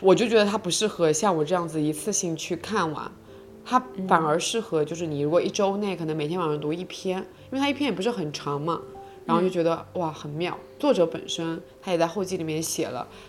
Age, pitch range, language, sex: 20-39, 160-205 Hz, Chinese, female